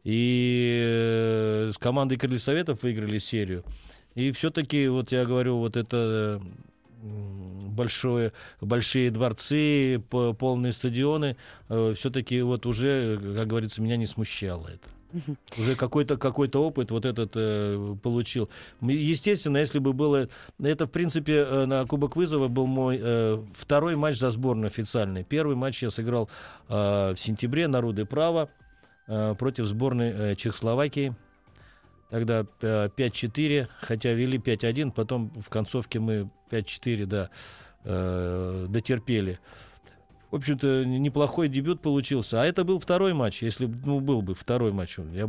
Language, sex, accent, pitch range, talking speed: Russian, male, native, 105-135 Hz, 125 wpm